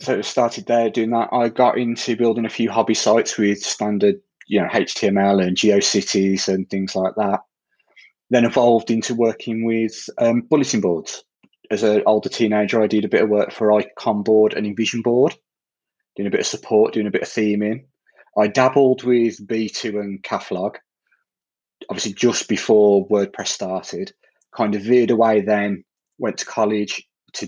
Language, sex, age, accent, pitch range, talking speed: English, male, 30-49, British, 105-120 Hz, 170 wpm